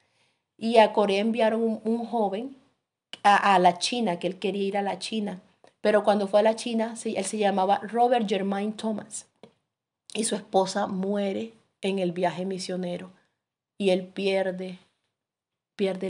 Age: 30-49